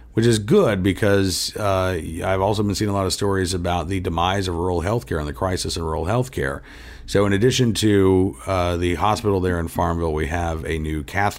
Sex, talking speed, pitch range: male, 220 wpm, 75-100 Hz